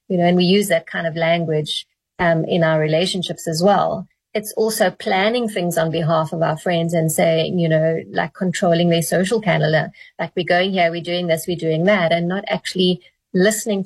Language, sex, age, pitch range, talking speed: English, female, 30-49, 165-215 Hz, 205 wpm